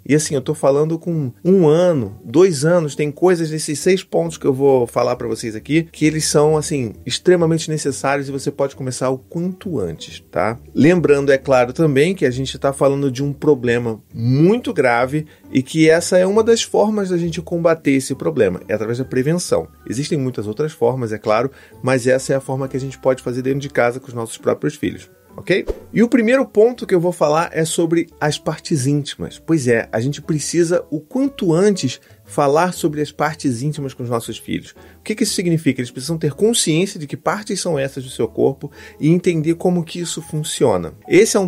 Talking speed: 215 wpm